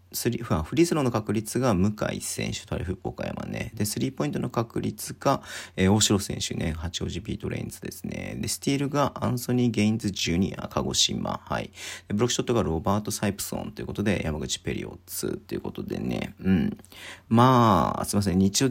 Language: Japanese